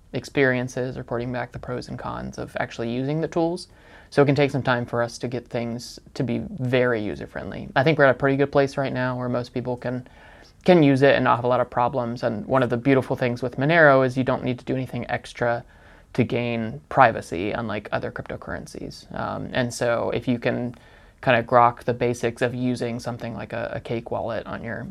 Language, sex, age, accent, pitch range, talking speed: English, male, 20-39, American, 120-135 Hz, 230 wpm